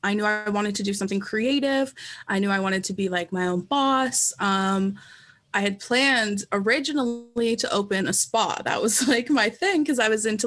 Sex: female